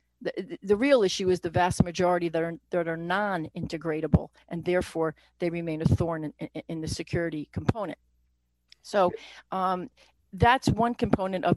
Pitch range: 170-220 Hz